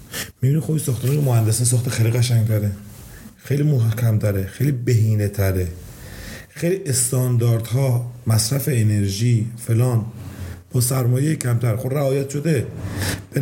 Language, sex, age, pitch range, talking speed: Persian, male, 40-59, 110-145 Hz, 125 wpm